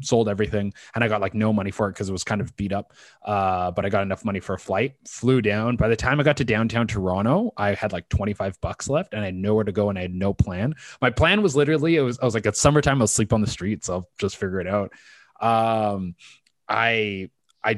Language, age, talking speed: English, 20-39, 260 wpm